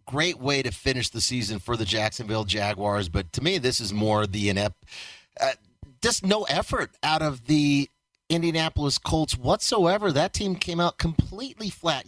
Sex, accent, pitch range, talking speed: male, American, 120-165 Hz, 170 wpm